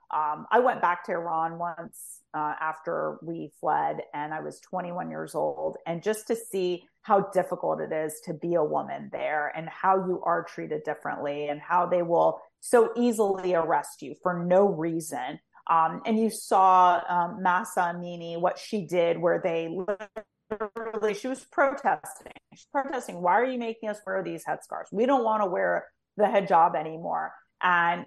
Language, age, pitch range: English, 30-49, 170-215 Hz